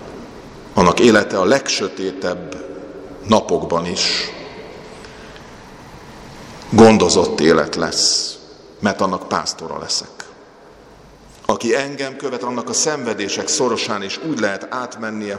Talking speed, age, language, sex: 95 wpm, 50-69, Hungarian, male